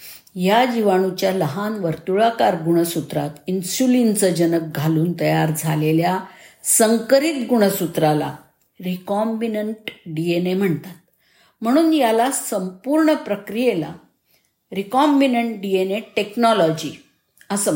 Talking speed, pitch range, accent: 90 wpm, 170-215 Hz, native